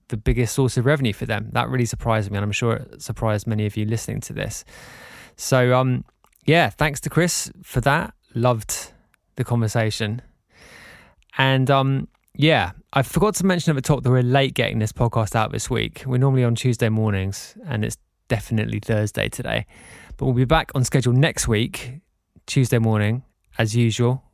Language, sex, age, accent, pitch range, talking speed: English, male, 20-39, British, 115-135 Hz, 180 wpm